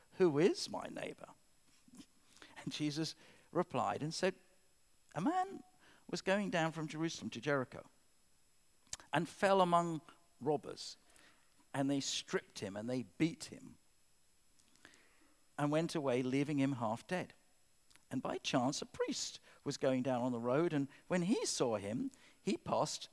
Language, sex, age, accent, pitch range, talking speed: English, male, 50-69, British, 140-175 Hz, 145 wpm